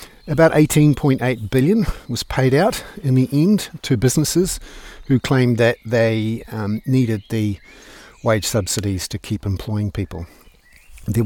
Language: English